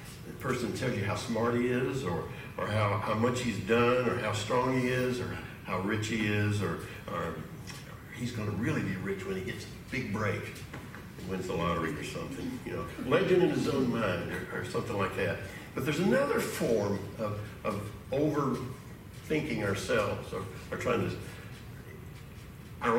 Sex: male